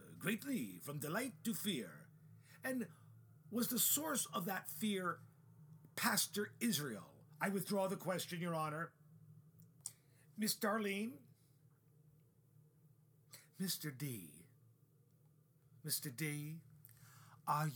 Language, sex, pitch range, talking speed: English, male, 145-185 Hz, 90 wpm